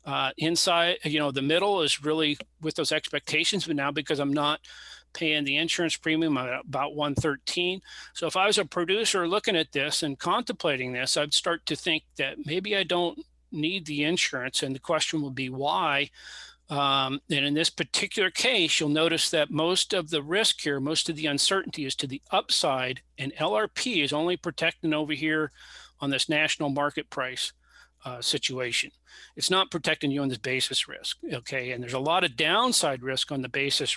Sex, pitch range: male, 135-165 Hz